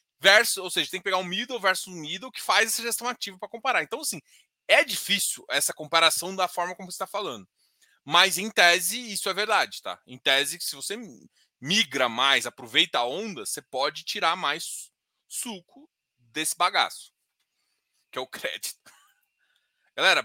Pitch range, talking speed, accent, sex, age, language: 175-240 Hz, 175 wpm, Brazilian, male, 20-39, Portuguese